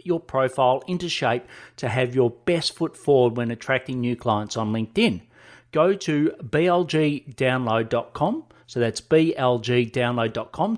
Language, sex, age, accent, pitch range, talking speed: English, male, 40-59, Australian, 115-150 Hz, 125 wpm